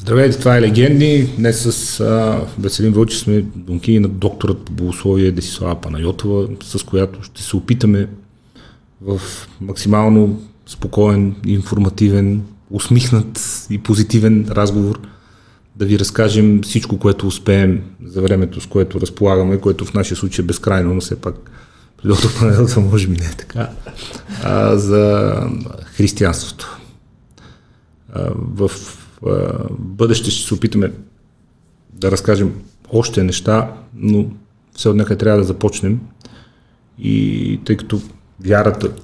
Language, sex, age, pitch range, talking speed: Bulgarian, male, 40-59, 95-110 Hz, 125 wpm